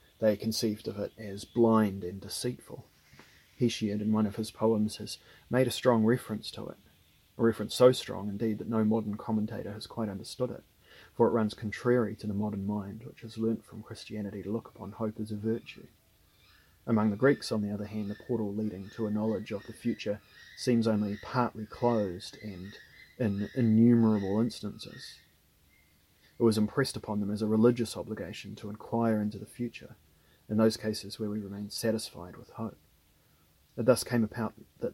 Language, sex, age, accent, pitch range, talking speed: English, male, 30-49, Australian, 100-115 Hz, 180 wpm